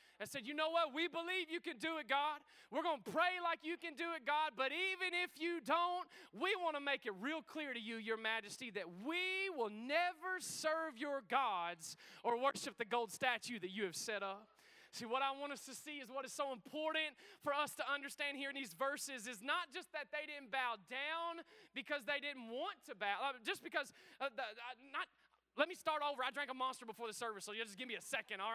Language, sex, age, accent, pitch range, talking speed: English, male, 20-39, American, 255-320 Hz, 240 wpm